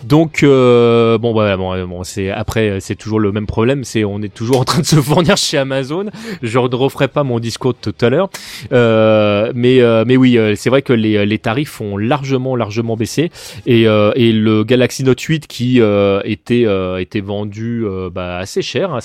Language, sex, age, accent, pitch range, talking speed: French, male, 30-49, French, 110-130 Hz, 210 wpm